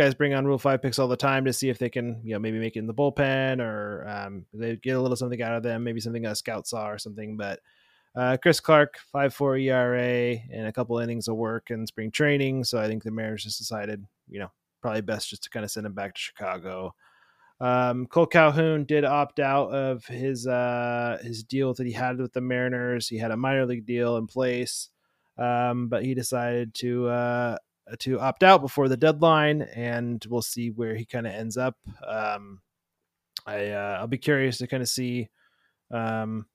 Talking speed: 215 wpm